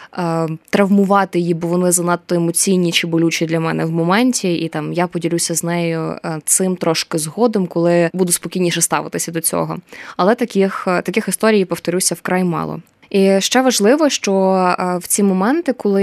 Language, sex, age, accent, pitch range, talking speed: Ukrainian, female, 20-39, native, 170-200 Hz, 155 wpm